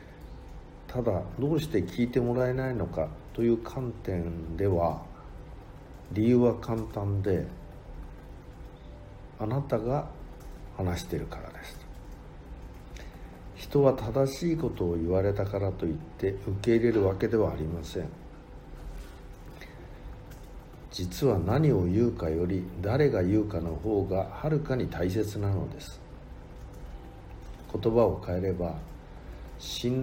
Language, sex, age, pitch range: Japanese, male, 60-79, 90-120 Hz